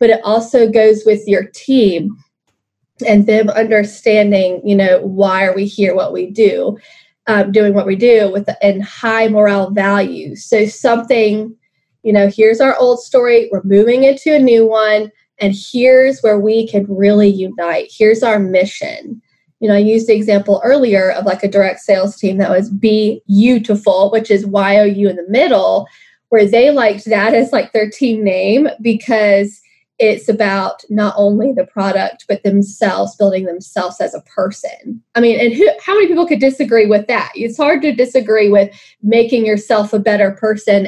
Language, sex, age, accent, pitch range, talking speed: English, female, 20-39, American, 200-230 Hz, 175 wpm